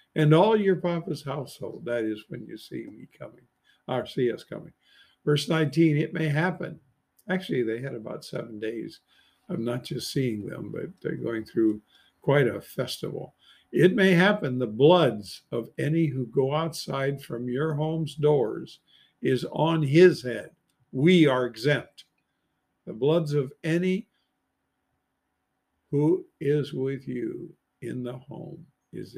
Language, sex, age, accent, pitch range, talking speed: English, male, 50-69, American, 125-160 Hz, 150 wpm